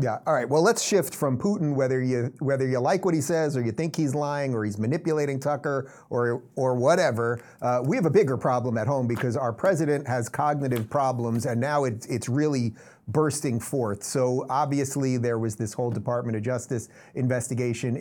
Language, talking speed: English, 195 wpm